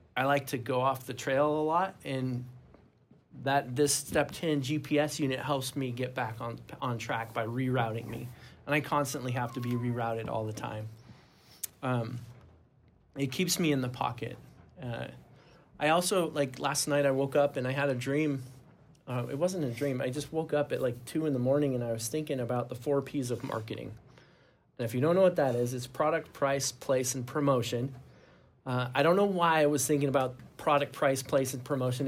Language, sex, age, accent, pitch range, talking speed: English, male, 20-39, American, 125-145 Hz, 205 wpm